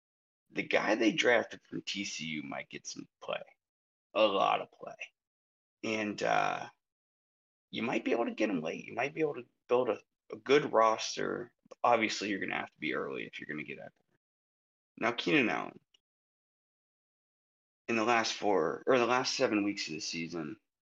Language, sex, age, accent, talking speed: English, male, 30-49, American, 180 wpm